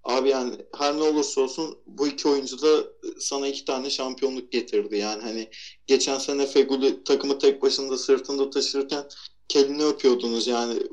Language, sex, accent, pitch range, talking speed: Turkish, male, native, 120-170 Hz, 155 wpm